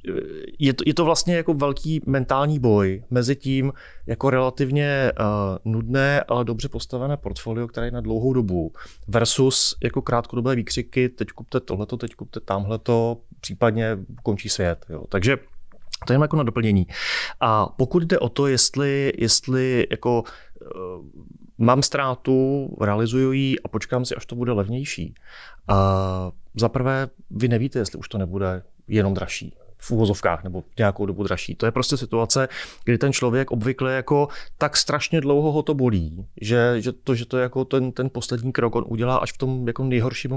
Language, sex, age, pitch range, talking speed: Slovak, male, 30-49, 105-130 Hz, 165 wpm